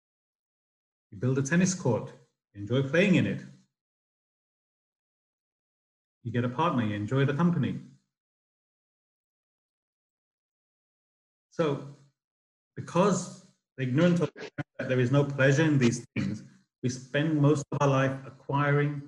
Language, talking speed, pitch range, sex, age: English, 125 wpm, 120-150 Hz, male, 40-59